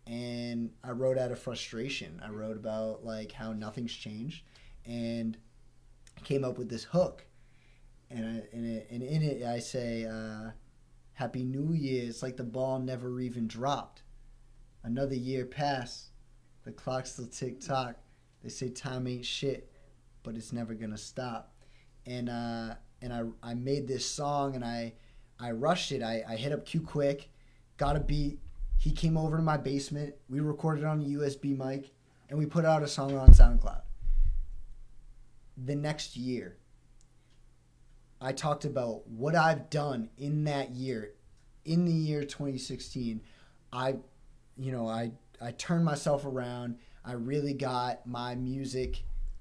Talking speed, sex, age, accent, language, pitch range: 155 wpm, male, 20-39, American, English, 115-140 Hz